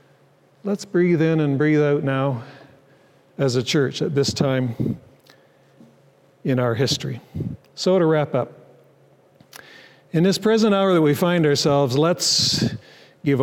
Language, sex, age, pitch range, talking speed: English, male, 50-69, 135-165 Hz, 135 wpm